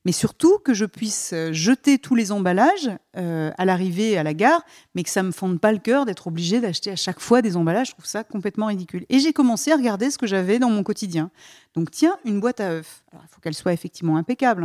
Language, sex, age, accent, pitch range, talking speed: French, female, 40-59, French, 175-255 Hz, 245 wpm